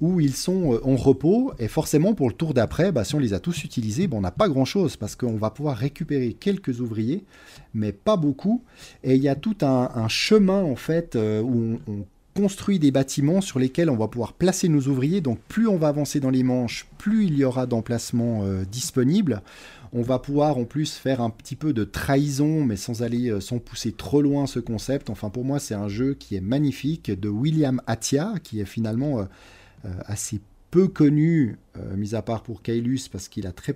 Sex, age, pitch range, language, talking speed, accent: male, 40-59, 105-145 Hz, French, 215 wpm, French